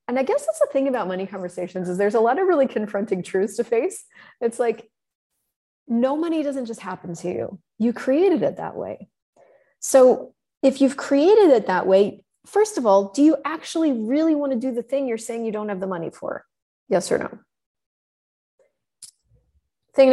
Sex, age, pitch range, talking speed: female, 30-49, 180-250 Hz, 190 wpm